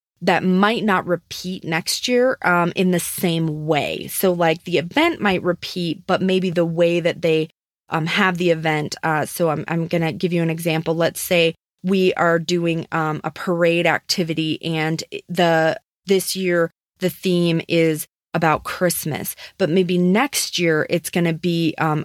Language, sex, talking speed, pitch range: English, female, 170 wpm, 160-185 Hz